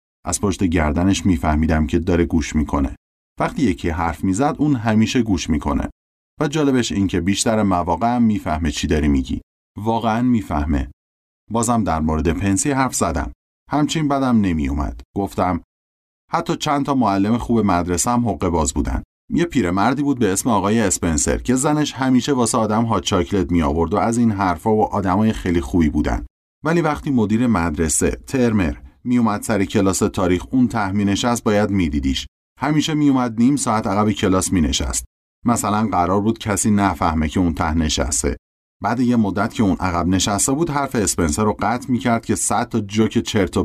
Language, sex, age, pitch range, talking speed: Persian, male, 30-49, 80-115 Hz, 165 wpm